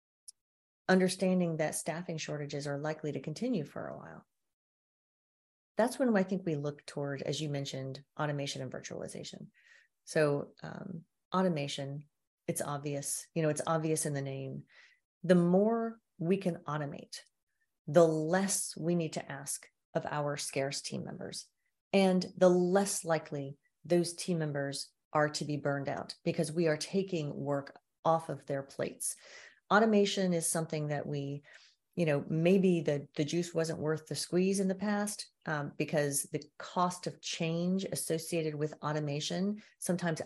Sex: female